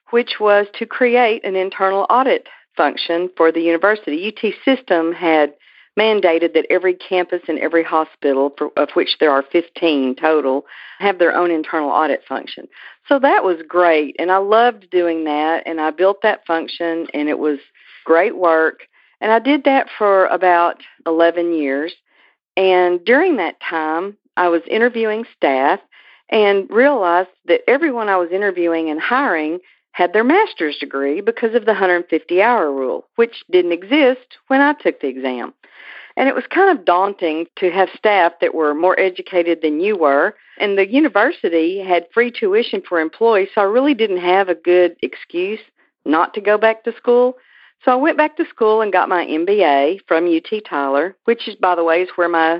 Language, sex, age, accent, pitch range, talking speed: English, female, 50-69, American, 165-225 Hz, 175 wpm